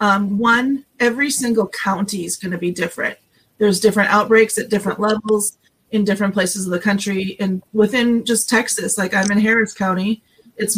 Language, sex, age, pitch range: English, female, 30-49, 195-220 Hz